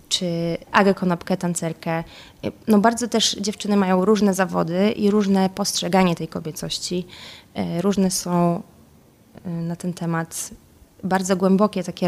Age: 20-39